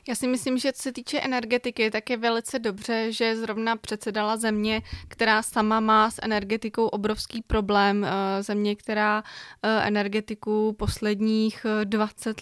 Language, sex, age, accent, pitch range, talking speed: Czech, female, 20-39, native, 210-225 Hz, 135 wpm